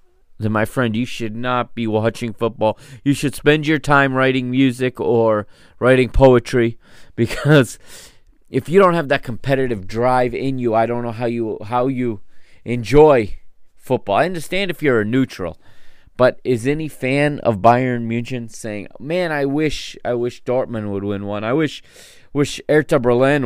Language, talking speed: English, 170 wpm